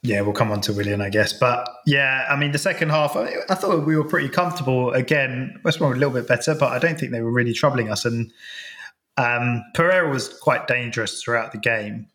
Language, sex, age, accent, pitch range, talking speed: English, male, 20-39, British, 110-130 Hz, 235 wpm